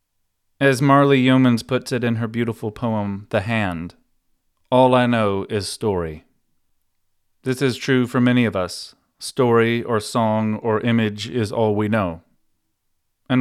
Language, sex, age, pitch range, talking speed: English, male, 30-49, 100-120 Hz, 150 wpm